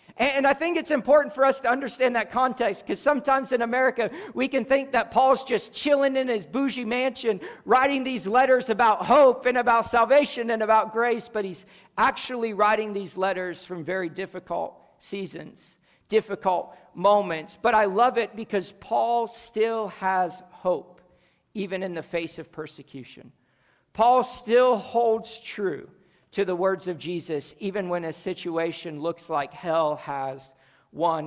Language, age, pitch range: English, 50-69, 175-245 Hz